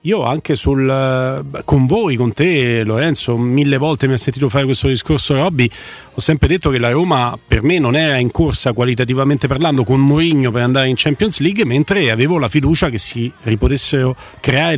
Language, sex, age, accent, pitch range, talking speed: Italian, male, 40-59, native, 125-160 Hz, 185 wpm